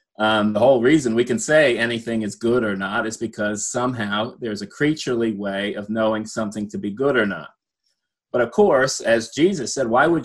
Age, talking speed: 30-49, 205 wpm